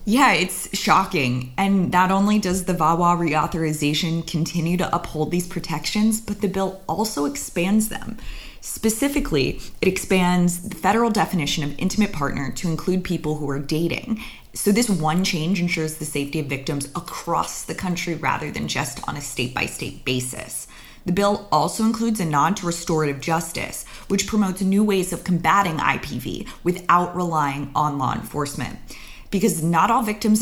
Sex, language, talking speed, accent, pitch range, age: female, English, 160 wpm, American, 155-195 Hz, 20-39